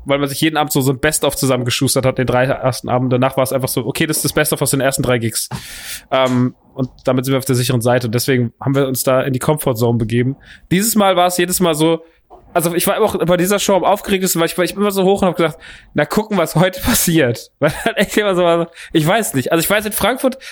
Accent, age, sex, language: German, 20-39, male, German